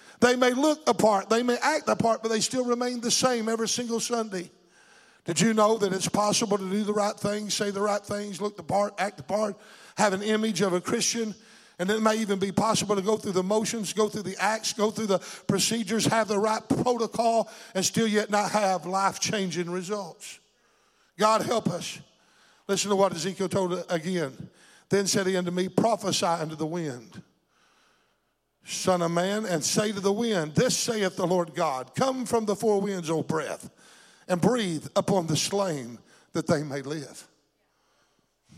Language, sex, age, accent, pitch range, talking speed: English, male, 50-69, American, 185-220 Hz, 190 wpm